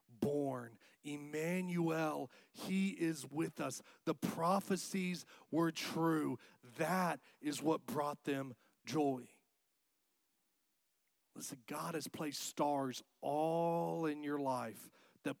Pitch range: 115-150 Hz